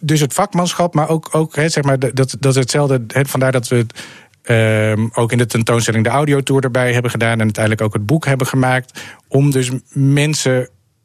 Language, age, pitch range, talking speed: Dutch, 40-59, 115-130 Hz, 195 wpm